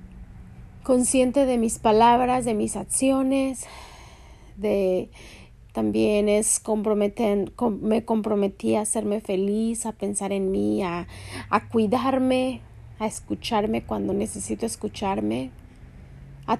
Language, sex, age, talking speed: Spanish, female, 30-49, 100 wpm